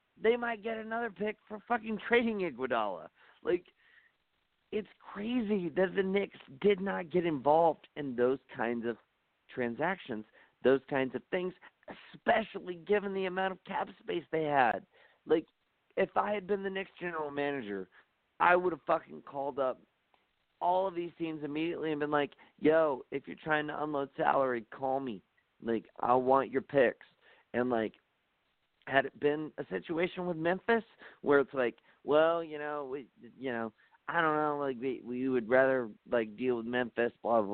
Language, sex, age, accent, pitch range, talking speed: English, male, 50-69, American, 130-190 Hz, 170 wpm